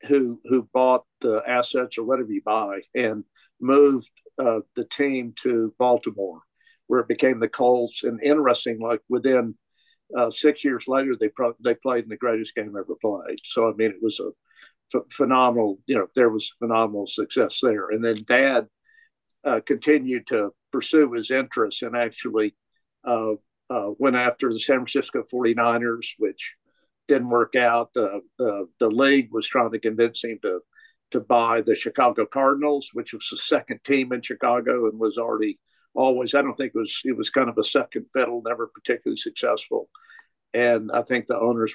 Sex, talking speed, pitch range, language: male, 175 wpm, 115-140 Hz, English